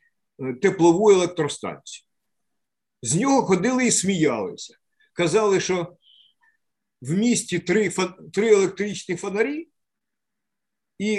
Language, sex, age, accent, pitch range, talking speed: Ukrainian, male, 50-69, native, 170-230 Hz, 85 wpm